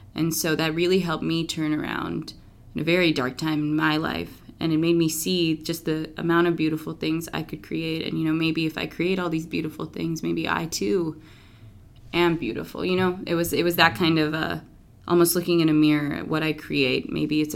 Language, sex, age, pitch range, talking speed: English, female, 20-39, 145-170 Hz, 230 wpm